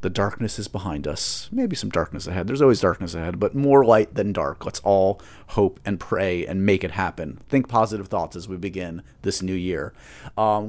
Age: 30-49